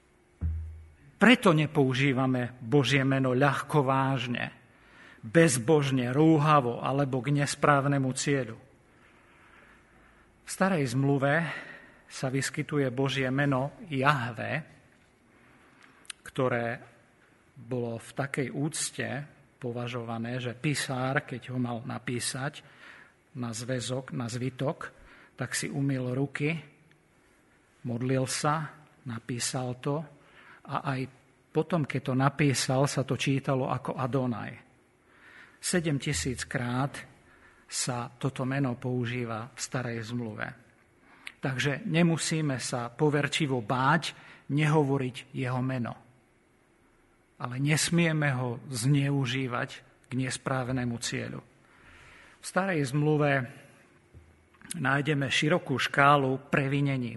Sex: male